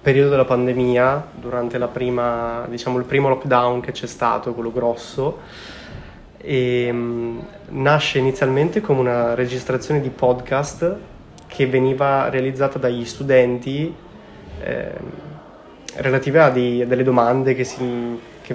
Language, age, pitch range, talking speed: Italian, 20-39, 125-140 Hz, 125 wpm